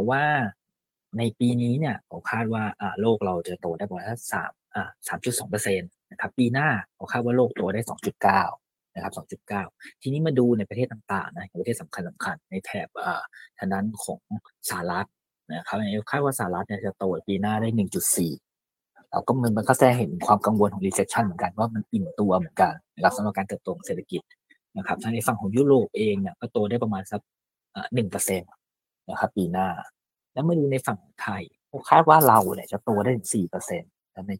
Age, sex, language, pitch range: 20-39, male, Thai, 95-125 Hz